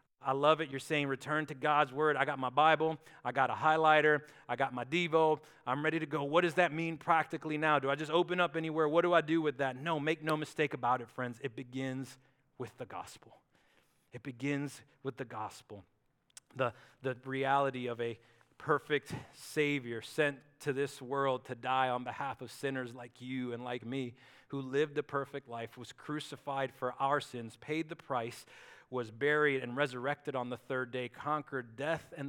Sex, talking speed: male, 195 wpm